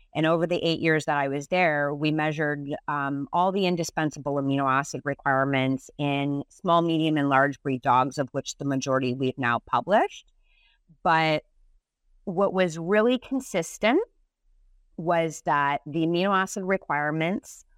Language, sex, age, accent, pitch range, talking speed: English, female, 30-49, American, 140-195 Hz, 145 wpm